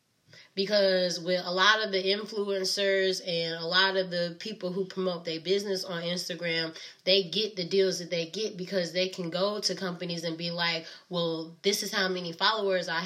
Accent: American